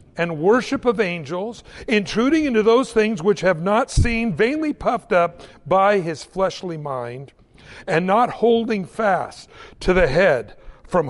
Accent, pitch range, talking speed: American, 165-235 Hz, 145 wpm